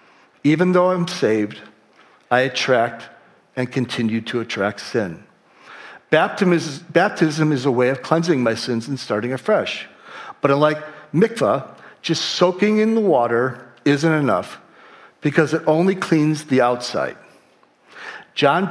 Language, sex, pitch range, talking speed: English, male, 125-160 Hz, 130 wpm